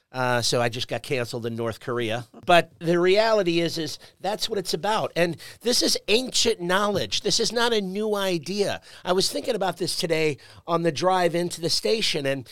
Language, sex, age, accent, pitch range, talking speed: English, male, 50-69, American, 140-180 Hz, 200 wpm